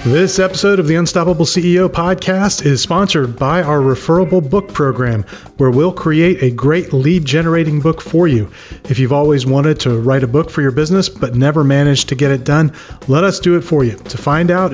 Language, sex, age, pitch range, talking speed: English, male, 40-59, 140-170 Hz, 210 wpm